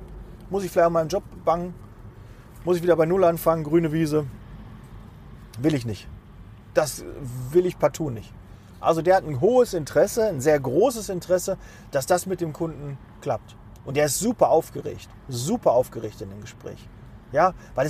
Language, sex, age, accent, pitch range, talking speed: German, male, 40-59, German, 110-165 Hz, 170 wpm